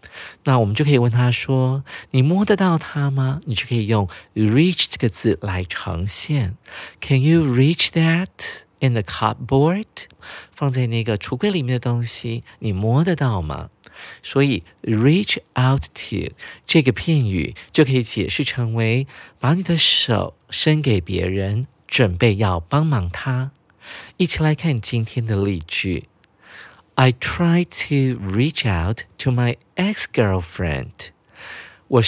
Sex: male